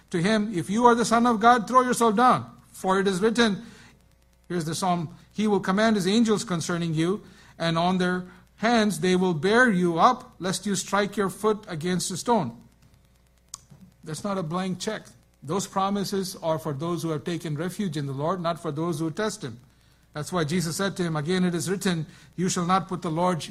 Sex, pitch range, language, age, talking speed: male, 160-205 Hz, English, 50-69, 210 wpm